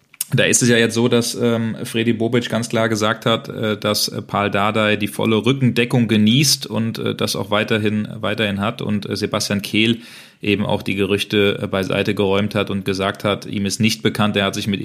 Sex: male